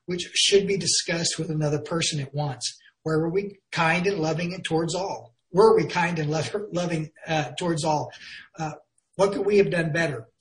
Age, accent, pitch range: 50-69, American, 150-185 Hz